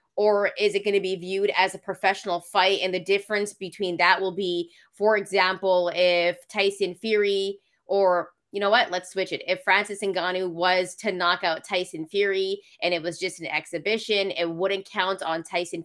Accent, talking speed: American, 190 wpm